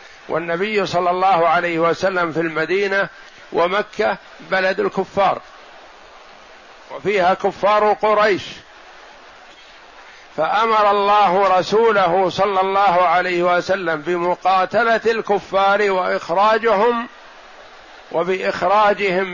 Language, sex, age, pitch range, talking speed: Arabic, male, 60-79, 180-210 Hz, 75 wpm